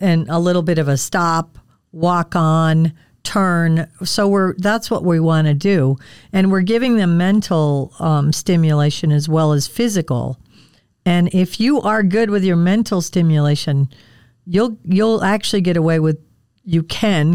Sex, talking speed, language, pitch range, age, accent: female, 160 wpm, English, 150-185 Hz, 50-69, American